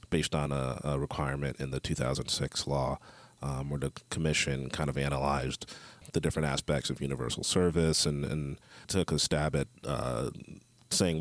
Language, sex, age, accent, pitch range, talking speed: English, male, 40-59, American, 70-80 Hz, 160 wpm